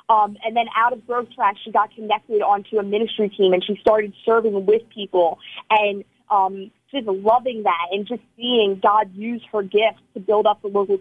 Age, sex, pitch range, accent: 30-49, female, 205-240 Hz, American